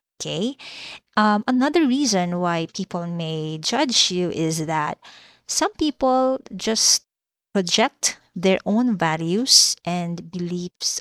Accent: Filipino